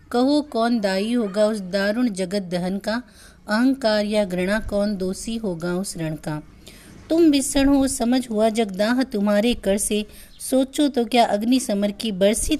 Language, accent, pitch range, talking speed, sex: Hindi, native, 195-245 Hz, 160 wpm, female